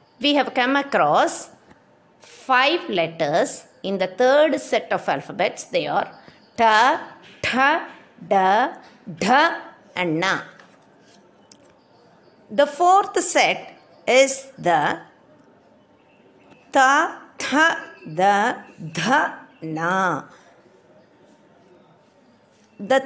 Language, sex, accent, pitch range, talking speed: Tamil, female, native, 210-310 Hz, 80 wpm